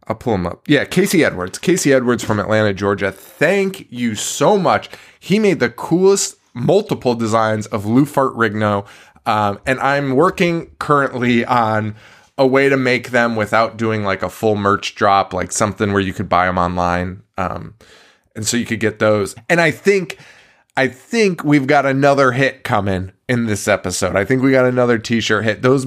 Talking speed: 185 wpm